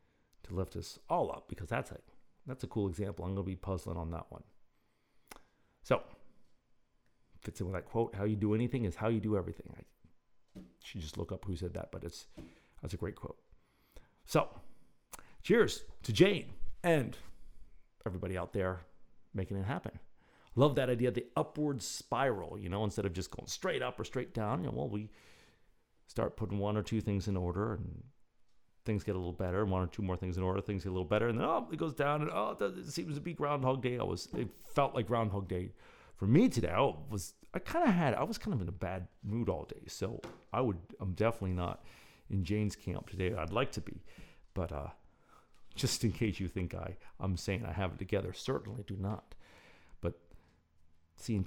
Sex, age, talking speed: male, 50-69, 210 wpm